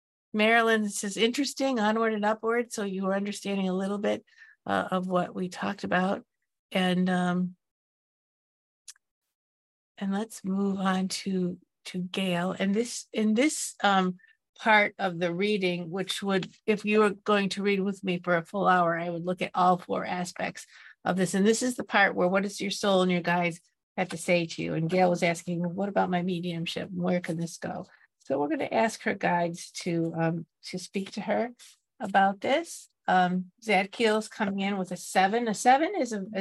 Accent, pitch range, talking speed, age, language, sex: American, 175-210 Hz, 195 wpm, 50-69, English, female